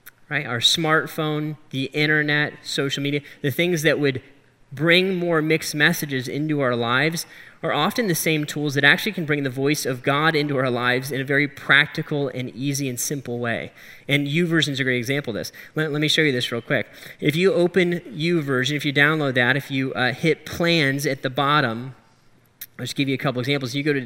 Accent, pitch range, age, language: American, 135-155 Hz, 10-29, English